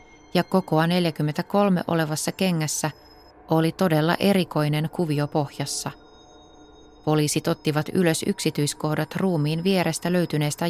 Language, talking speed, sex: Finnish, 95 wpm, female